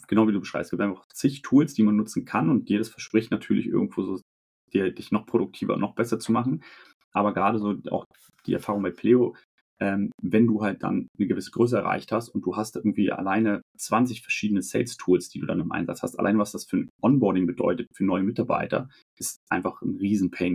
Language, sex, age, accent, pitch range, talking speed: German, male, 30-49, German, 95-110 Hz, 210 wpm